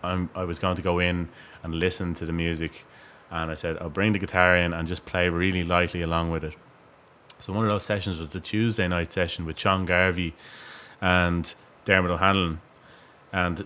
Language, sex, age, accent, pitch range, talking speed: English, male, 20-39, Irish, 85-95 Hz, 195 wpm